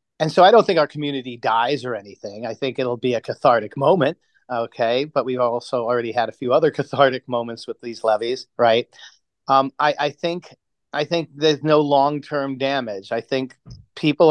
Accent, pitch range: American, 120-135 Hz